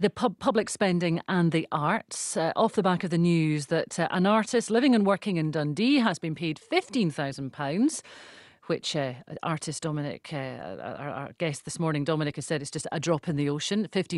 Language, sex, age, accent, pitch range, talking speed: English, female, 40-59, British, 160-225 Hz, 195 wpm